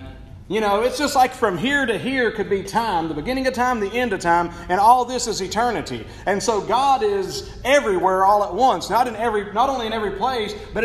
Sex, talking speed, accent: male, 230 wpm, American